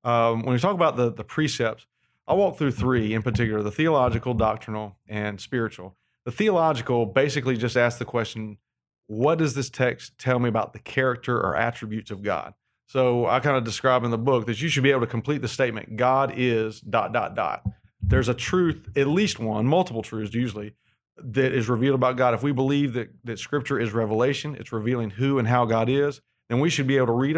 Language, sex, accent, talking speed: English, male, American, 215 wpm